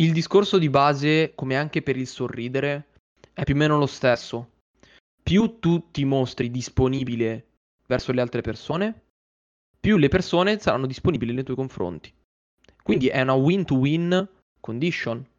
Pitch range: 125-155 Hz